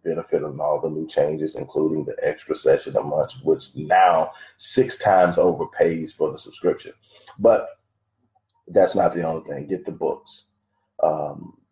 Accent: American